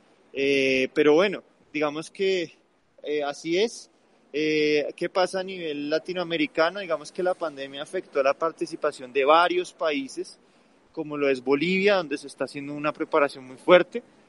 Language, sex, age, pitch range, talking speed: Spanish, male, 20-39, 135-180 Hz, 155 wpm